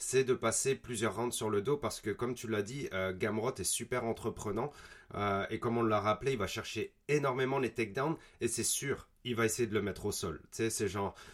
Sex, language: male, French